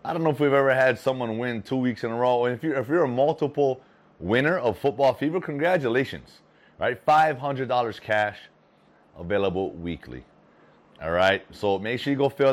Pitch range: 100-140 Hz